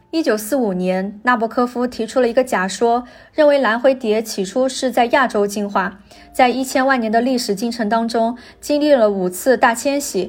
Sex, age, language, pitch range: female, 20-39, Chinese, 210-265 Hz